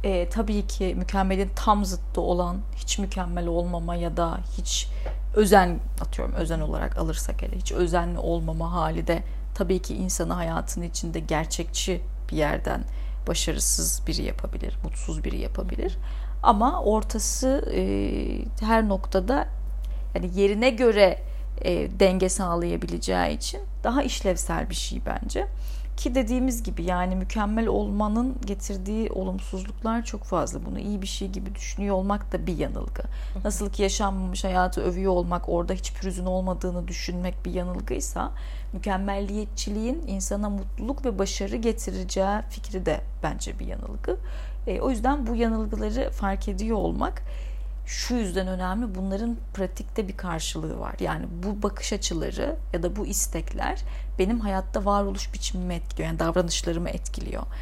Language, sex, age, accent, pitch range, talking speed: Turkish, female, 40-59, native, 175-210 Hz, 135 wpm